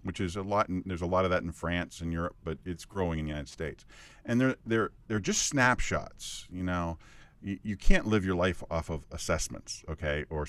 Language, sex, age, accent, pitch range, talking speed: English, male, 50-69, American, 90-120 Hz, 230 wpm